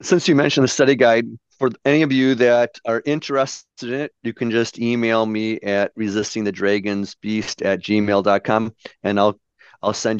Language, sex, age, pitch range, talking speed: English, male, 40-59, 100-125 Hz, 160 wpm